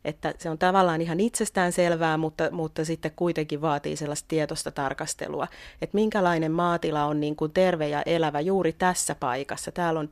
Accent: native